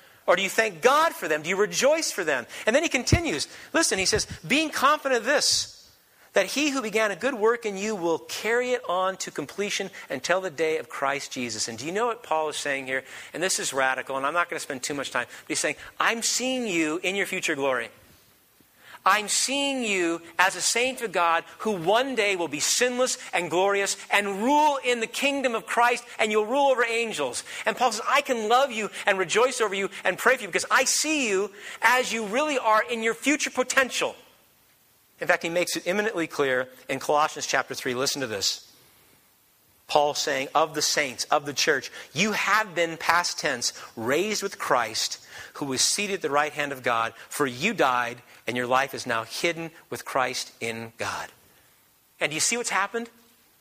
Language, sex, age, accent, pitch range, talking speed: English, male, 50-69, American, 160-240 Hz, 210 wpm